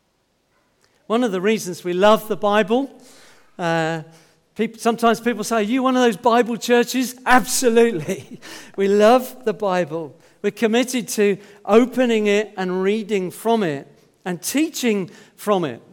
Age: 50-69